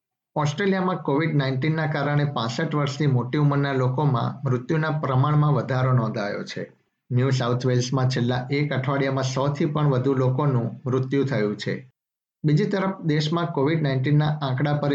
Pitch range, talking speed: 130-150 Hz, 135 wpm